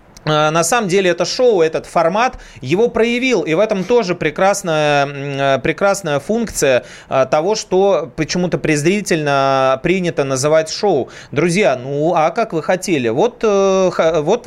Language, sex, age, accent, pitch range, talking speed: Russian, male, 30-49, native, 140-190 Hz, 130 wpm